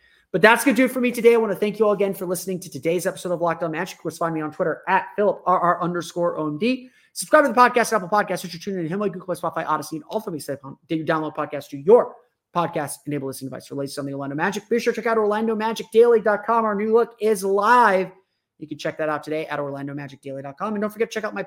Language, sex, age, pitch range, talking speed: English, male, 30-49, 155-195 Hz, 265 wpm